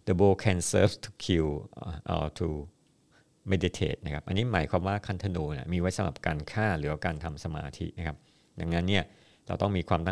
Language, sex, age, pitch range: Thai, male, 60-79, 80-95 Hz